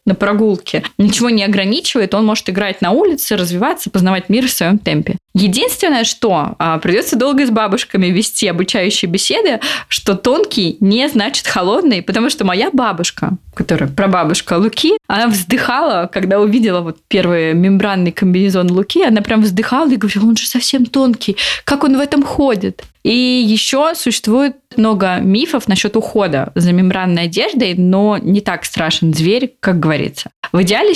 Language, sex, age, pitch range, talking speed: Russian, female, 20-39, 185-230 Hz, 155 wpm